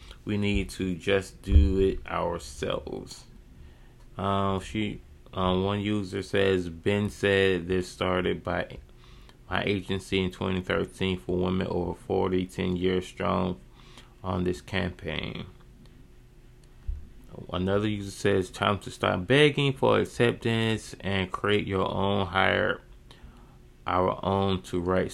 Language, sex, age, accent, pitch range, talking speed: English, male, 20-39, American, 90-105 Hz, 120 wpm